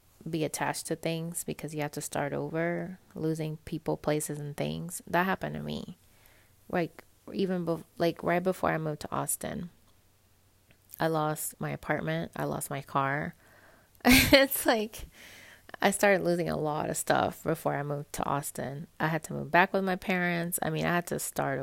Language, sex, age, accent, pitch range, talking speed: English, female, 20-39, American, 135-170 Hz, 180 wpm